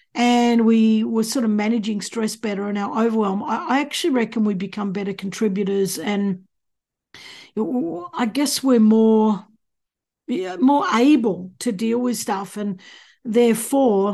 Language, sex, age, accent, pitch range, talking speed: English, female, 50-69, Australian, 205-245 Hz, 130 wpm